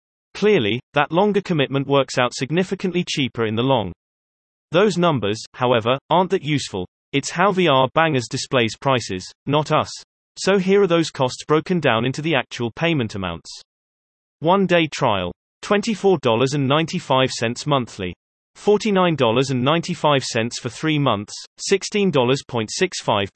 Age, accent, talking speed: 30-49, British, 120 wpm